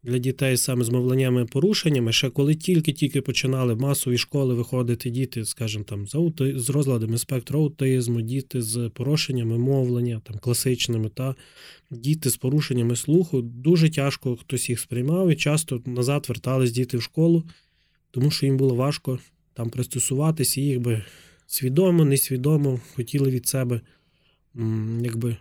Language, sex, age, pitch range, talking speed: Ukrainian, male, 20-39, 120-145 Hz, 140 wpm